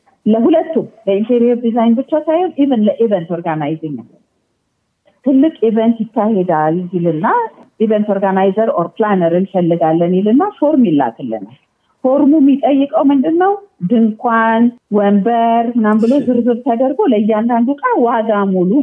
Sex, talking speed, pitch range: female, 90 wpm, 180-255 Hz